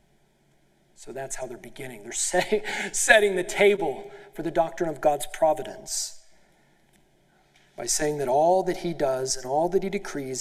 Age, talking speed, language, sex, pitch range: 40-59, 155 wpm, English, male, 150-190 Hz